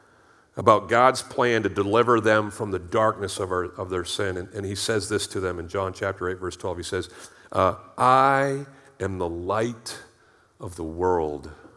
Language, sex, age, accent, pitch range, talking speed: English, male, 50-69, American, 95-130 Hz, 185 wpm